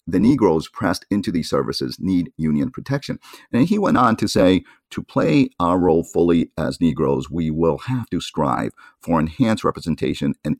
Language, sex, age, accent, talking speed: English, male, 50-69, American, 175 wpm